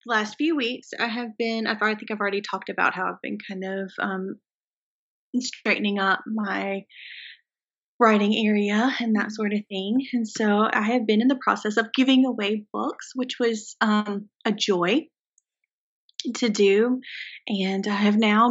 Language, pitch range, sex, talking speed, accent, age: English, 200-240 Hz, female, 165 wpm, American, 20-39